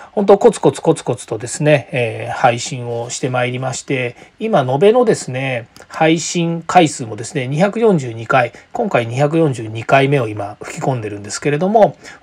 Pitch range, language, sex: 125-180 Hz, Japanese, male